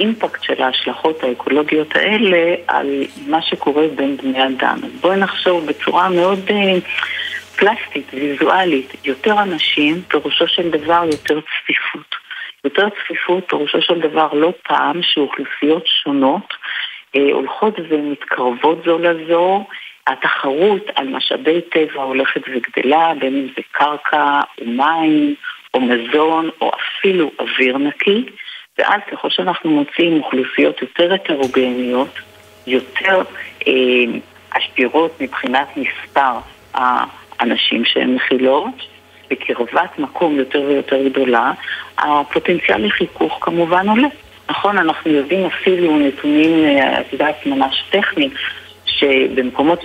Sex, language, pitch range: female, Hebrew, 135-175 Hz